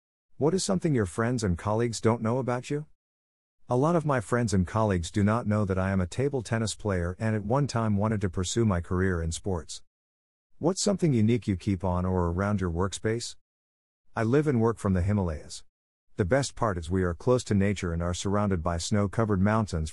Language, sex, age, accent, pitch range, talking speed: English, male, 50-69, American, 90-115 Hz, 215 wpm